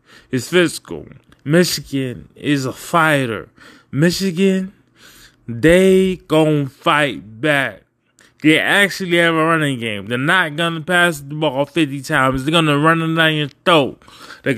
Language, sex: English, male